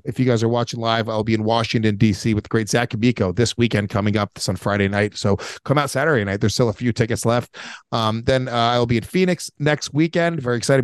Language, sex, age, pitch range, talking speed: English, male, 30-49, 105-130 Hz, 250 wpm